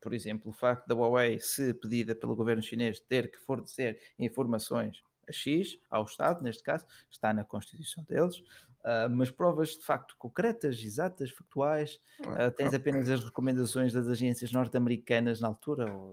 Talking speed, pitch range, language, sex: 165 wpm, 110-130 Hz, Portuguese, male